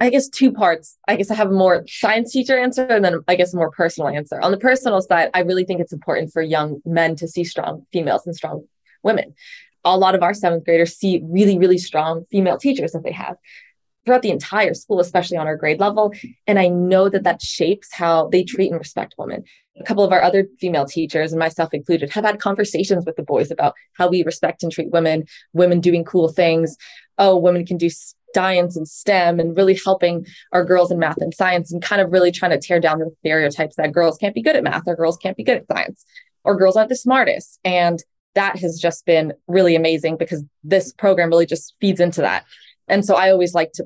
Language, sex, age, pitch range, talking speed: English, female, 20-39, 165-200 Hz, 230 wpm